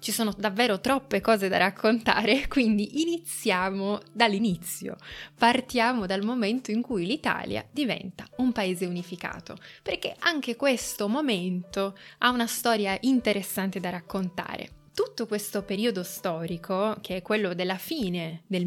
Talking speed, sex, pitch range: 130 wpm, female, 185-230 Hz